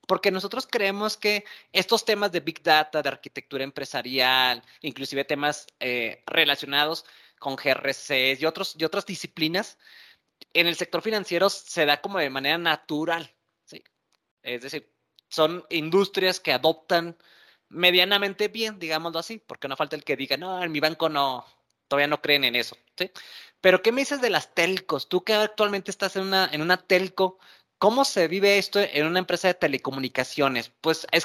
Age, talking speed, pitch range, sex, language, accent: 30-49, 165 wpm, 145-190 Hz, male, Spanish, Mexican